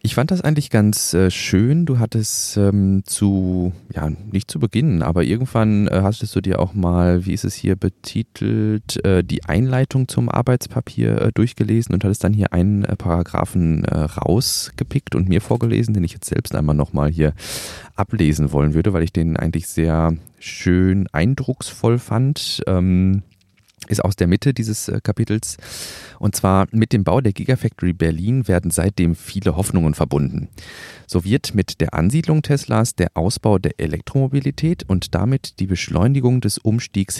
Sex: male